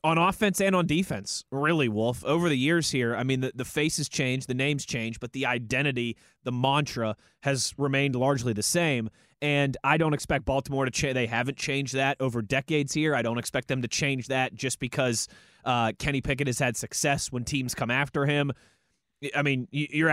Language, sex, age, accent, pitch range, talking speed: English, male, 20-39, American, 125-145 Hz, 200 wpm